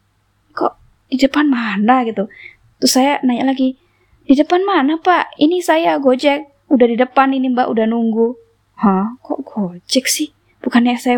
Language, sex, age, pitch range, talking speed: Indonesian, female, 10-29, 225-290 Hz, 150 wpm